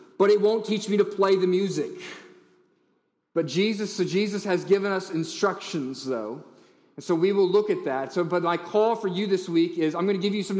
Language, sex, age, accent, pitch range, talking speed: English, male, 30-49, American, 155-190 Hz, 225 wpm